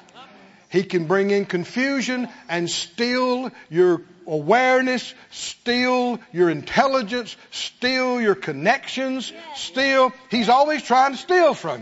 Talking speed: 110 wpm